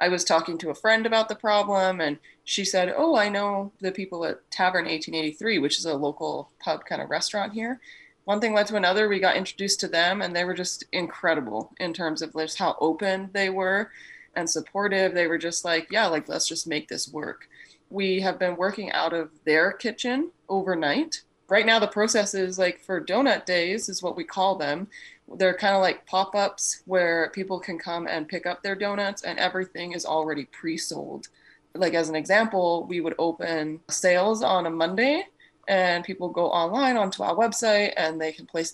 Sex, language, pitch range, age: female, English, 165-200 Hz, 20-39